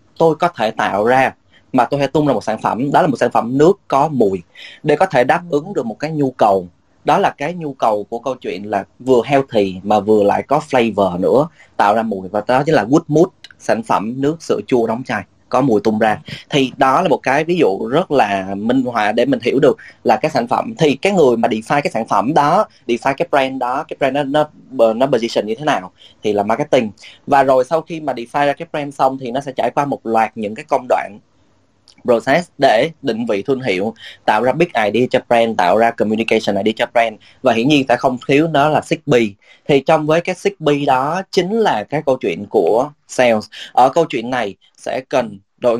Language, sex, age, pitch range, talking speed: Vietnamese, male, 20-39, 110-145 Hz, 235 wpm